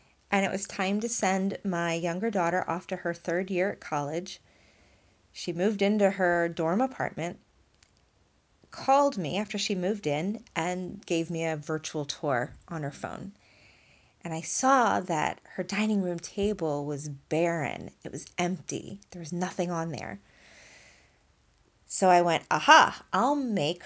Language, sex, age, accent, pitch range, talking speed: English, female, 30-49, American, 160-220 Hz, 155 wpm